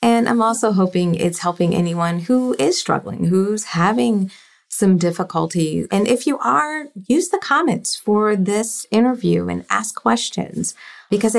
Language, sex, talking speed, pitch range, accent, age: English, female, 150 wpm, 170-220 Hz, American, 30-49